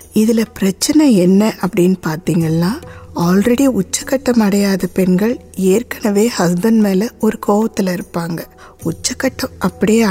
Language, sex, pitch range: Tamil, female, 185-220 Hz